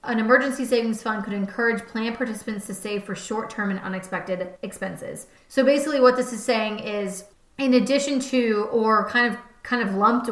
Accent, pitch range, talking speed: American, 195-235 Hz, 180 wpm